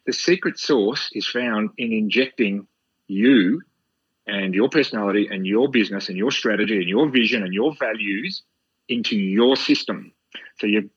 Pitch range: 115-185 Hz